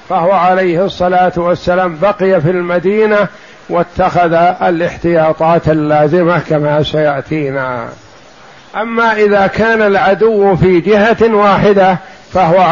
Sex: male